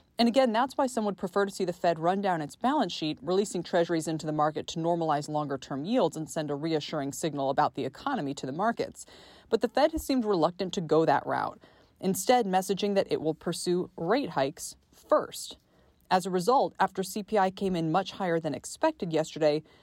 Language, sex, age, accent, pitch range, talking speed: English, female, 20-39, American, 155-215 Hz, 205 wpm